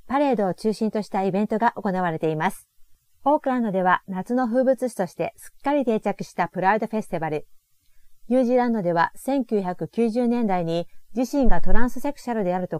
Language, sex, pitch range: Japanese, female, 185-250 Hz